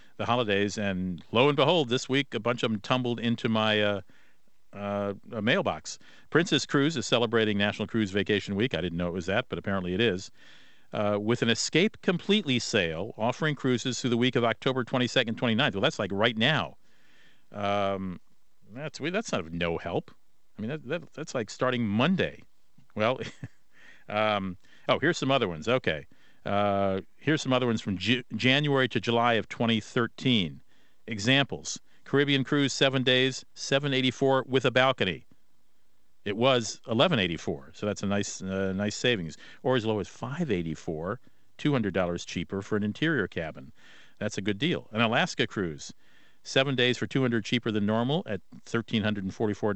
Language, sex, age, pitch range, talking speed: English, male, 50-69, 100-130 Hz, 170 wpm